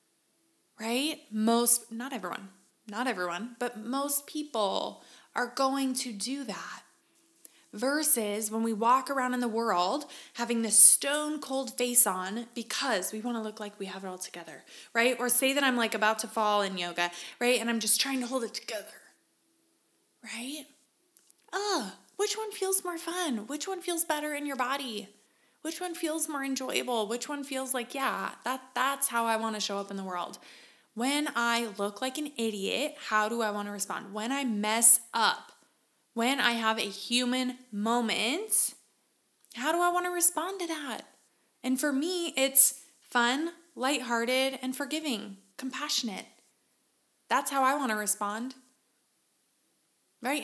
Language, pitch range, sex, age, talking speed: English, 220-275 Hz, female, 20-39, 170 wpm